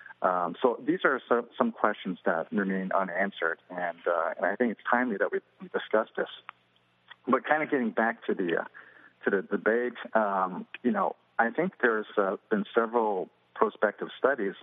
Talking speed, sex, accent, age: 170 wpm, male, American, 50-69